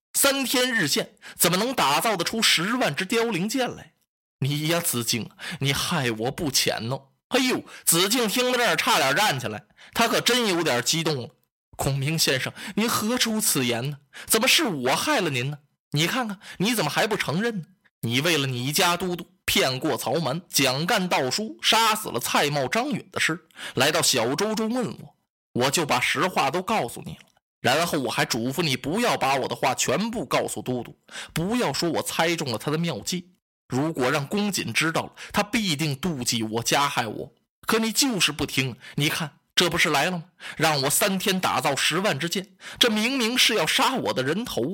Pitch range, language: 140-215 Hz, Chinese